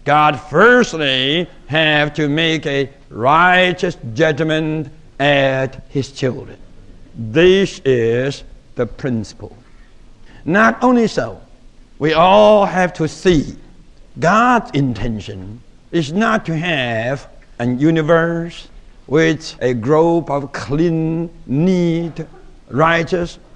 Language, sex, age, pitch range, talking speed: English, male, 60-79, 140-185 Hz, 95 wpm